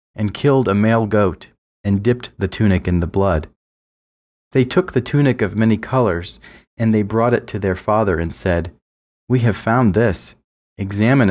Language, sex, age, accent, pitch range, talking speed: English, male, 30-49, American, 90-115 Hz, 175 wpm